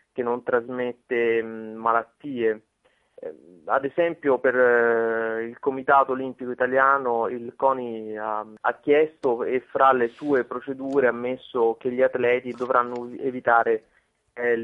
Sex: male